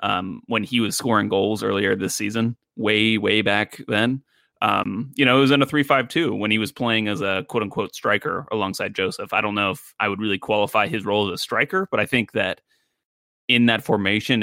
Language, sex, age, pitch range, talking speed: English, male, 20-39, 100-125 Hz, 225 wpm